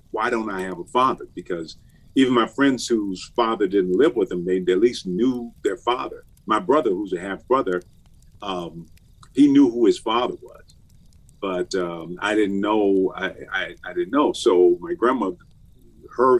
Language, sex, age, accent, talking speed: English, male, 50-69, American, 180 wpm